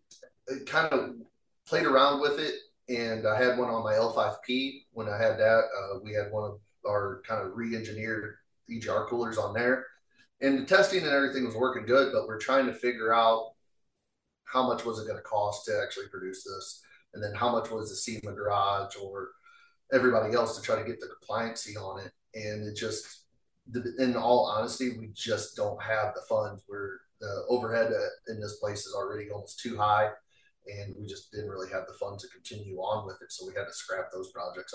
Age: 30-49